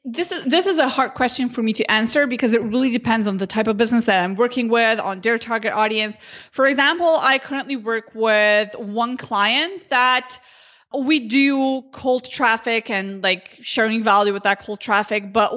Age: 20-39